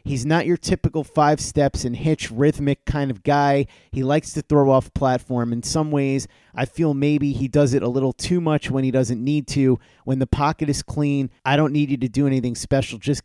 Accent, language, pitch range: American, English, 130-155 Hz